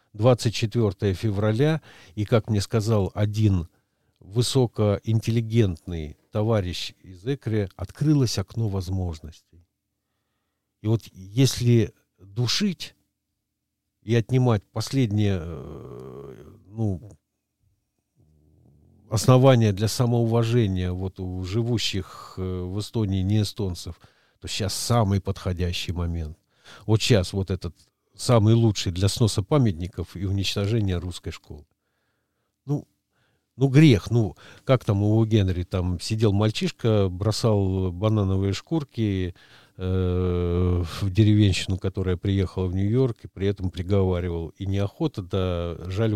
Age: 50-69